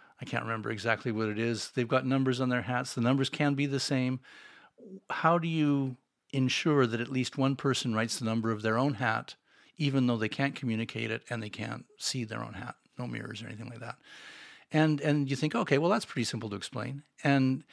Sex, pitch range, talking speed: male, 120-145 Hz, 225 wpm